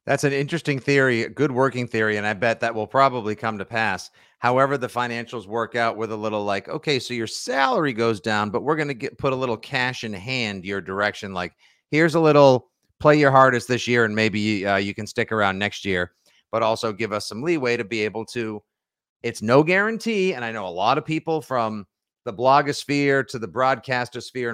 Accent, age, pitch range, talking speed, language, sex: American, 40-59, 110-135 Hz, 220 wpm, English, male